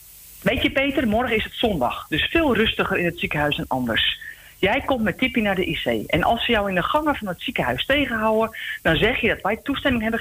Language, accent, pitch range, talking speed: Dutch, Dutch, 155-225 Hz, 235 wpm